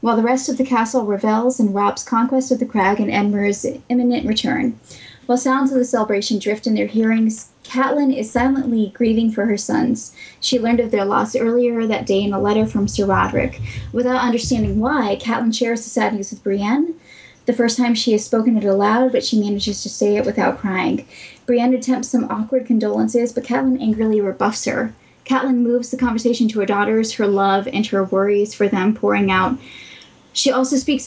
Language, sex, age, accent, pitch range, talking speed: English, female, 10-29, American, 205-250 Hz, 195 wpm